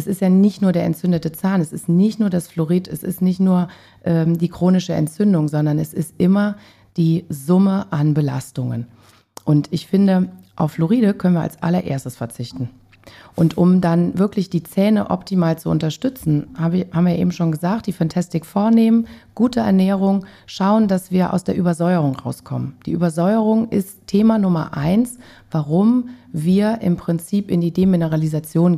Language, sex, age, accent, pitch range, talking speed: German, female, 40-59, German, 160-195 Hz, 165 wpm